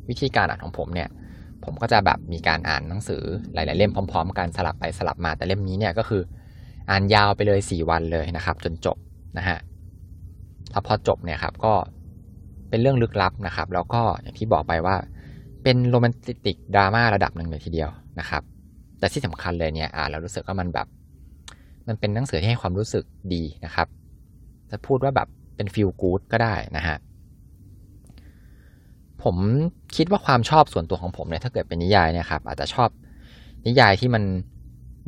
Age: 20-39